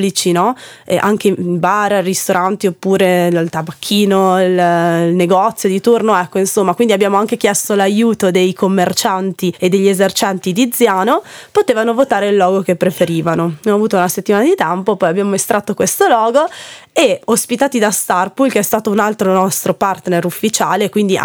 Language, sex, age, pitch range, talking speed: Italian, female, 20-39, 185-220 Hz, 160 wpm